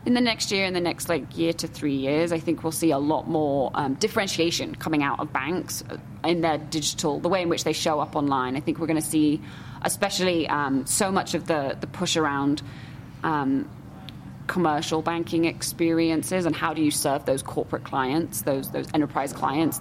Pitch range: 145-165 Hz